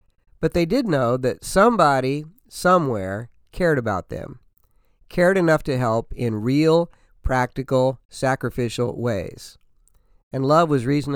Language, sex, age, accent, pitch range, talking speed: English, male, 50-69, American, 125-175 Hz, 125 wpm